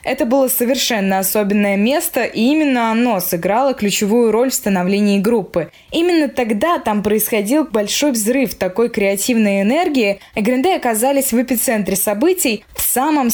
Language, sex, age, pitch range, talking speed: Russian, female, 20-39, 205-265 Hz, 140 wpm